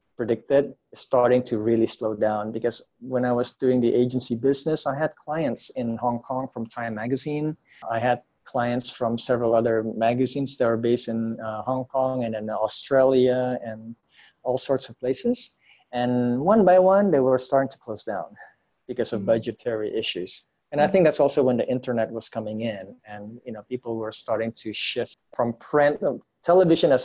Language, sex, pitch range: English, male, 115-140 Hz